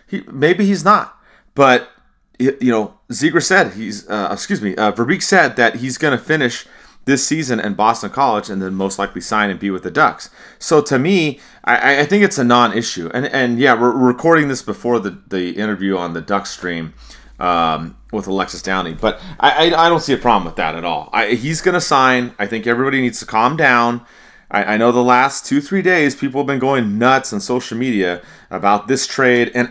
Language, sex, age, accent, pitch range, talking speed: English, male, 30-49, American, 100-135 Hz, 210 wpm